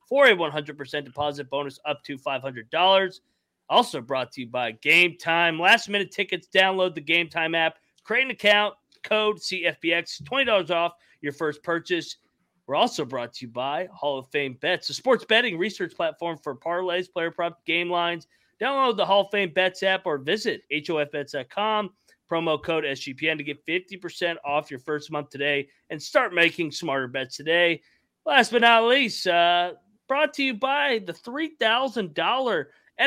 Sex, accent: male, American